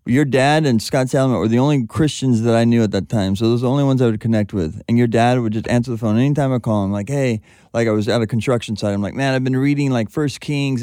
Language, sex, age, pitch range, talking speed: English, male, 30-49, 110-135 Hz, 310 wpm